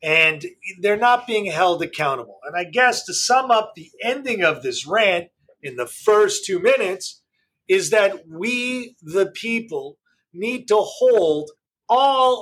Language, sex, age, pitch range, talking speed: English, male, 40-59, 195-255 Hz, 150 wpm